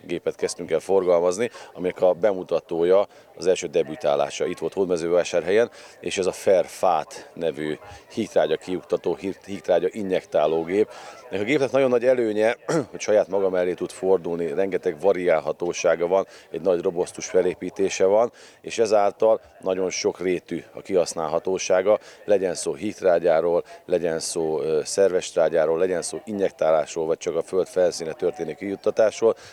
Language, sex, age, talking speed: Hungarian, male, 40-59, 135 wpm